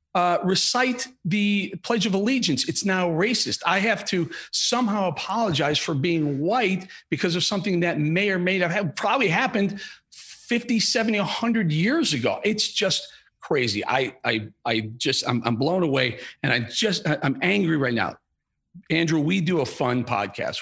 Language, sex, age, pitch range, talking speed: English, male, 40-59, 120-180 Hz, 165 wpm